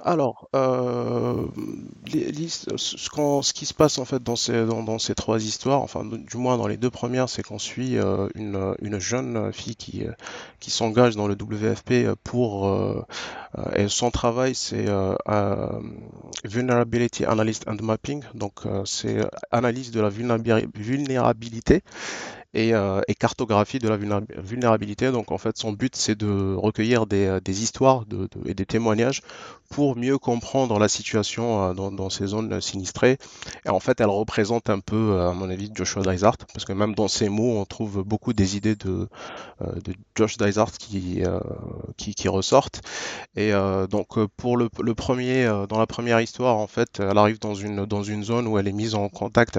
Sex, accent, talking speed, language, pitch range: male, French, 175 wpm, French, 100-115 Hz